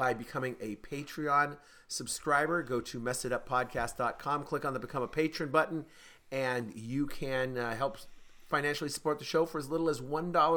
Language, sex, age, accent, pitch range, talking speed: English, male, 40-59, American, 130-155 Hz, 165 wpm